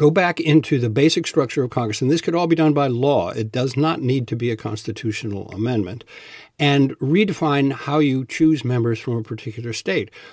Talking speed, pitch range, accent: 205 wpm, 110-150 Hz, American